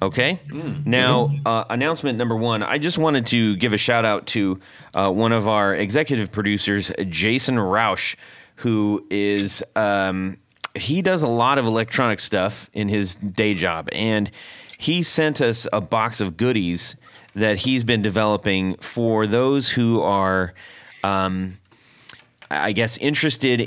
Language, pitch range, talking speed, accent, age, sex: English, 100-125 Hz, 135 wpm, American, 30-49, male